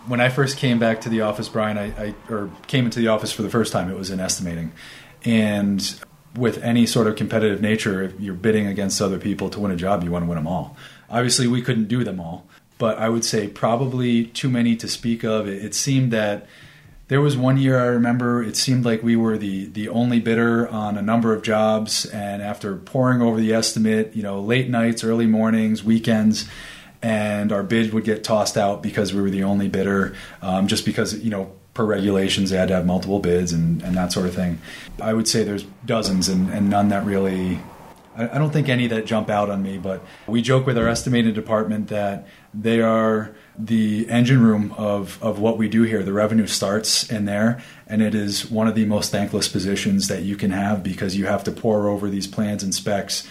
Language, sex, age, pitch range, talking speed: English, male, 30-49, 100-115 Hz, 225 wpm